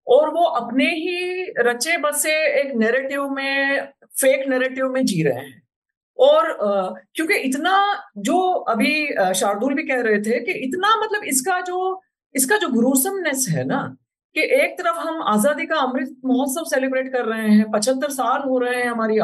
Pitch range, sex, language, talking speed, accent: 235-295 Hz, female, Hindi, 165 wpm, native